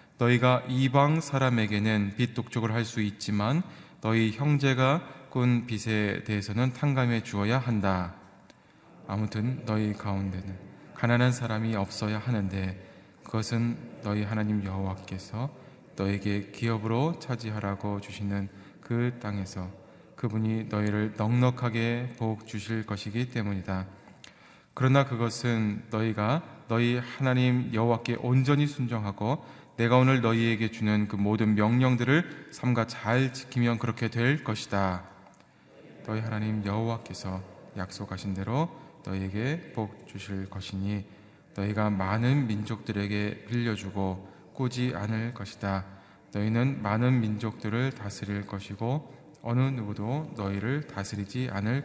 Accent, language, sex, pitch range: native, Korean, male, 100-125 Hz